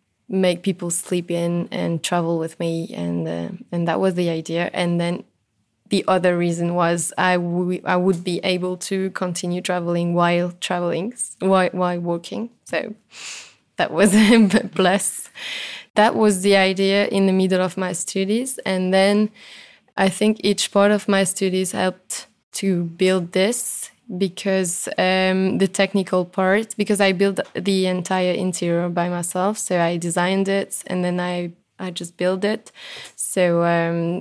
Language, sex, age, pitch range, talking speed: English, female, 20-39, 175-195 Hz, 155 wpm